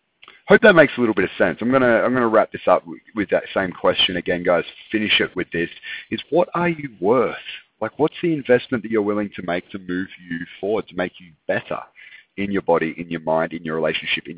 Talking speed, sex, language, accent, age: 245 wpm, male, English, Australian, 40-59